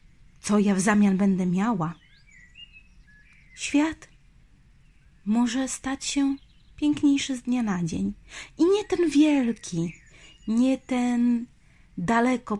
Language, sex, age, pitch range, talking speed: Polish, female, 30-49, 175-250 Hz, 105 wpm